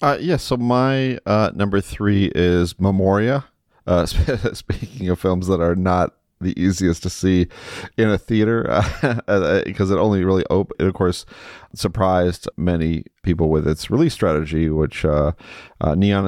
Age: 30-49